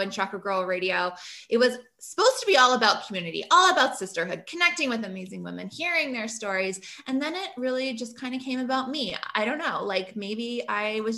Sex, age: female, 20-39